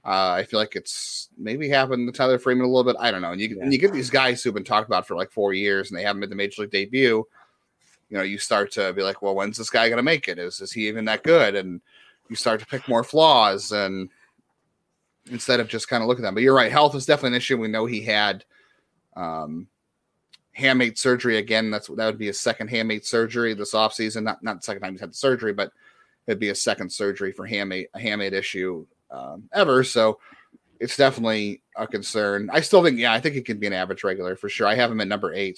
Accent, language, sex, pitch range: American, English, male, 100-130 Hz